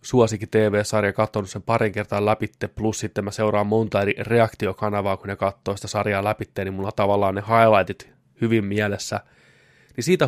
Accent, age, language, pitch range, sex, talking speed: native, 20-39, Finnish, 100-115 Hz, male, 165 wpm